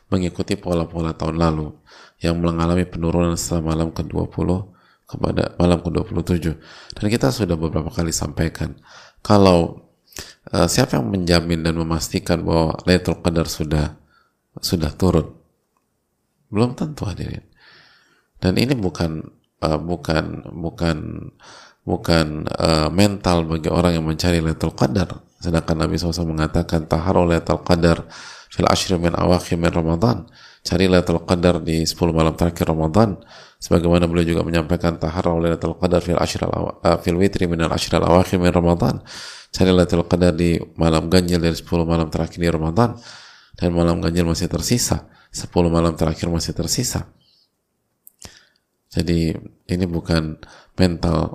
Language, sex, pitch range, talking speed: Indonesian, male, 80-90 Hz, 130 wpm